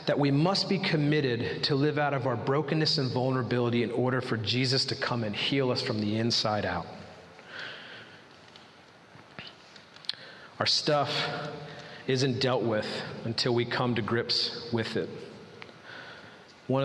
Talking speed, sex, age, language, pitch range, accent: 140 wpm, male, 40-59, English, 120-155 Hz, American